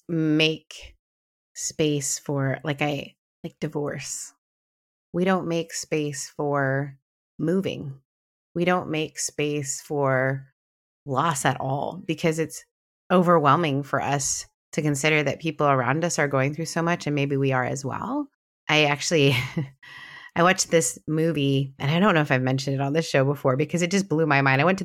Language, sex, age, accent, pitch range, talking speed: English, female, 30-49, American, 135-165 Hz, 170 wpm